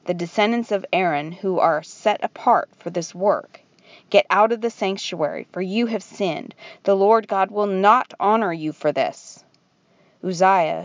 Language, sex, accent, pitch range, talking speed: English, female, American, 170-205 Hz, 165 wpm